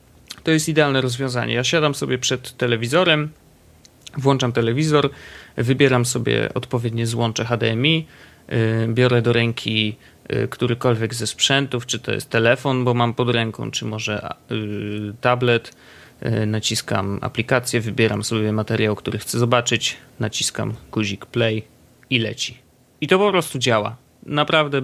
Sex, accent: male, native